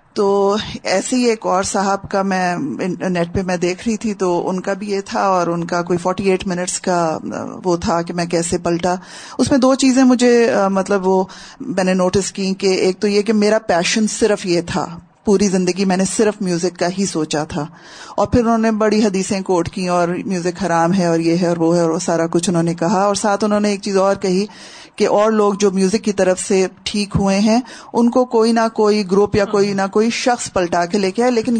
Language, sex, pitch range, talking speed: Urdu, female, 180-225 Hz, 235 wpm